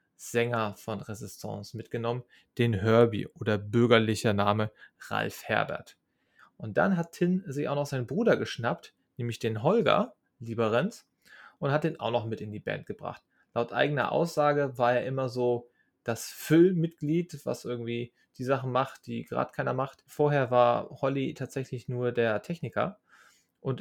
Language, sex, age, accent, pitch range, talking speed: German, male, 30-49, German, 115-140 Hz, 155 wpm